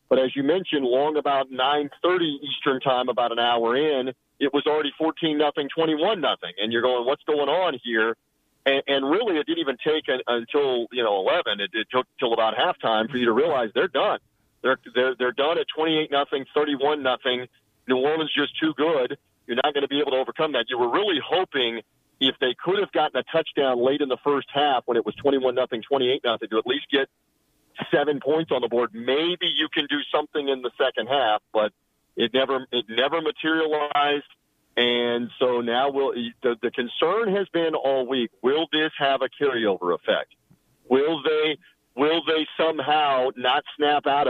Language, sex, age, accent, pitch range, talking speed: English, male, 40-59, American, 125-150 Hz, 200 wpm